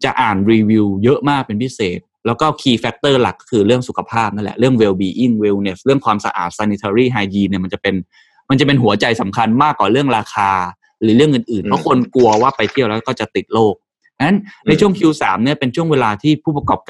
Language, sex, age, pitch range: Thai, male, 20-39, 100-135 Hz